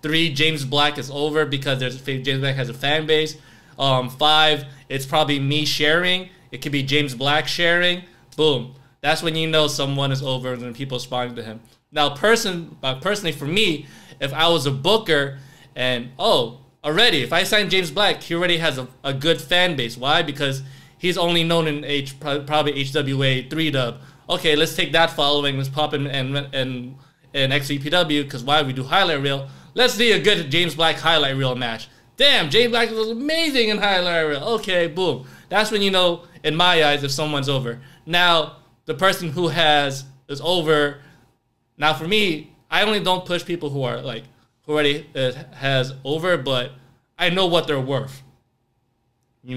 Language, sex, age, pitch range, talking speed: English, male, 20-39, 135-165 Hz, 185 wpm